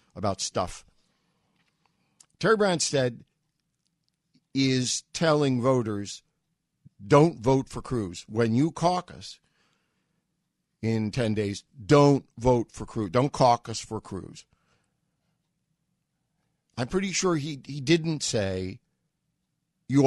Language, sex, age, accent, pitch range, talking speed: English, male, 50-69, American, 115-160 Hz, 100 wpm